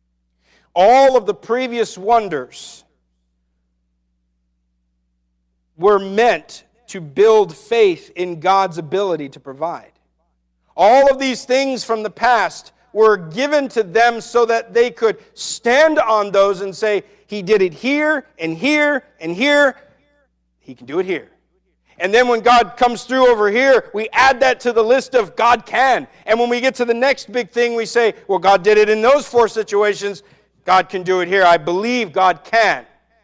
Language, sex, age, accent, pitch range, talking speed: English, male, 50-69, American, 155-235 Hz, 170 wpm